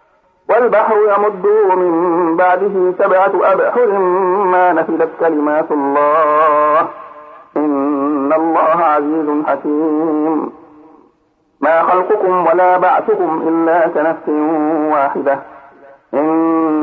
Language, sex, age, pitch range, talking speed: Arabic, male, 50-69, 150-175 Hz, 80 wpm